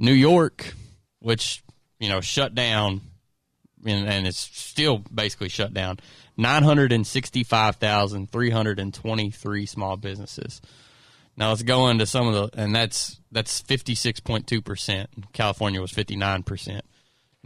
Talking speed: 105 wpm